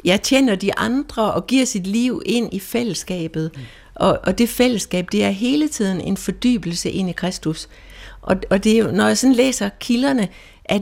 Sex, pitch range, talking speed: female, 190-240 Hz, 185 wpm